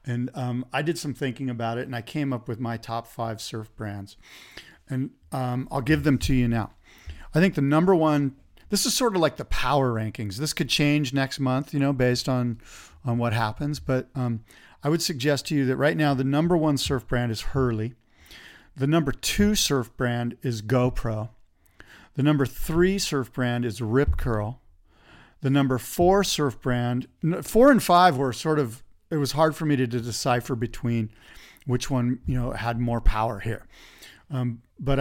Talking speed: 195 wpm